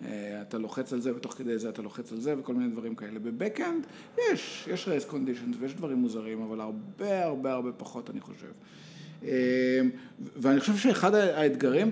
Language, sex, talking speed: Hebrew, male, 170 wpm